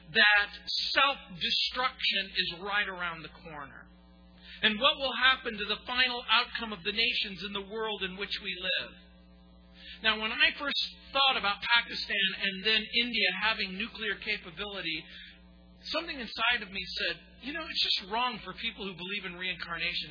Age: 40-59